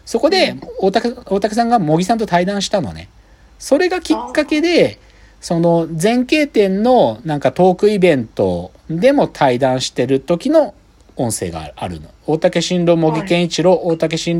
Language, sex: Japanese, male